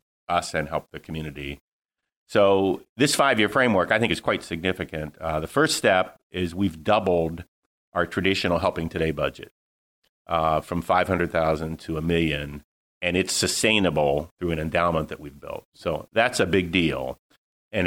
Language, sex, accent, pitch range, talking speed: English, male, American, 80-90 Hz, 165 wpm